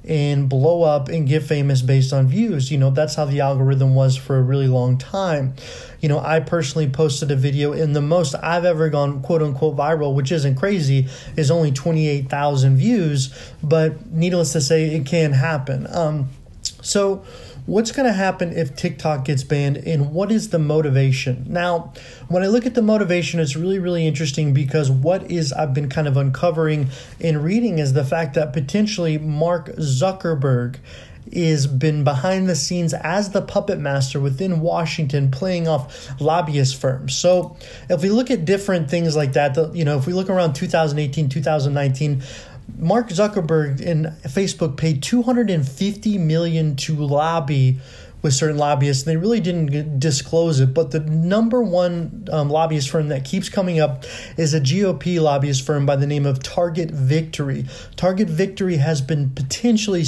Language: English